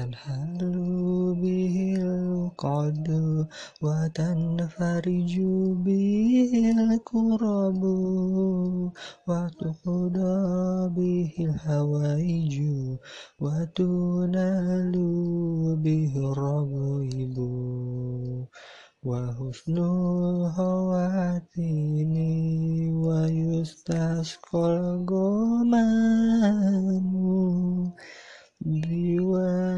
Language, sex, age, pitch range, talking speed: Indonesian, male, 20-39, 150-185 Hz, 40 wpm